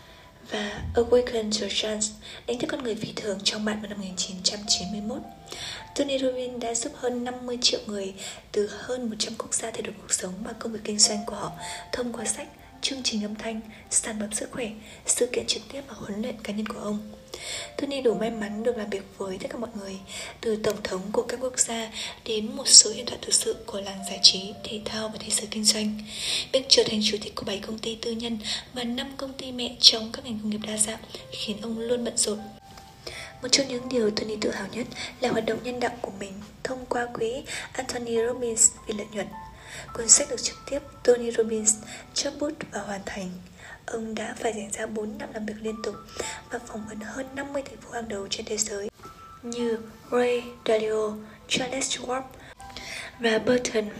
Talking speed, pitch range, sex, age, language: 210 wpm, 215-245 Hz, female, 20-39, Vietnamese